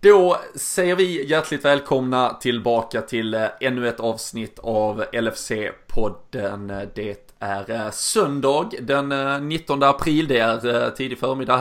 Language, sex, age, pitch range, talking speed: Swedish, male, 20-39, 120-140 Hz, 115 wpm